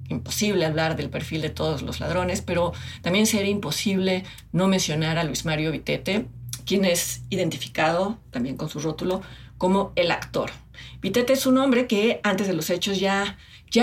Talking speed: 170 wpm